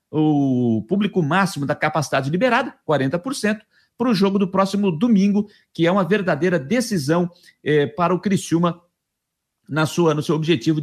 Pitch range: 160-220 Hz